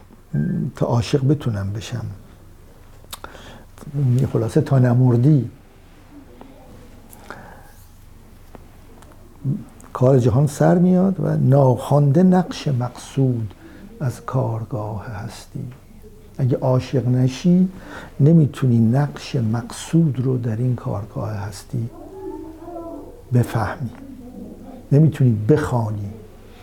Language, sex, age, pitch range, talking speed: Persian, male, 60-79, 105-145 Hz, 70 wpm